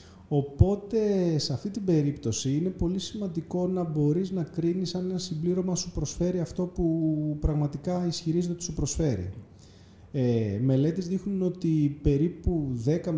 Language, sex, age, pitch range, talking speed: Greek, male, 30-49, 125-180 Hz, 135 wpm